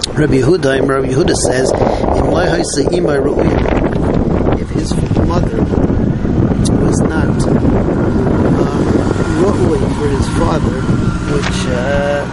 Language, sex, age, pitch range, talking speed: English, male, 40-59, 110-145 Hz, 80 wpm